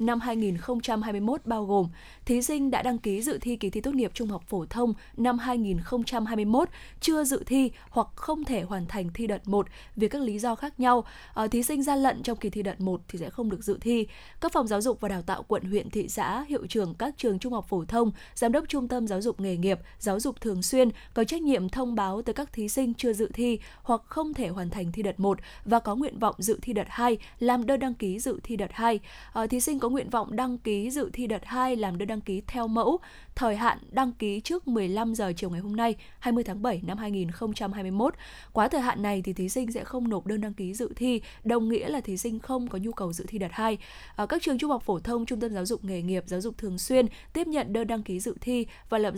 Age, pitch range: 10-29, 200-245 Hz